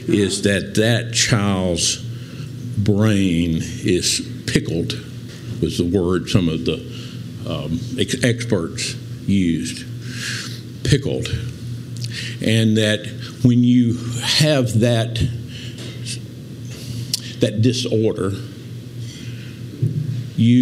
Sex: male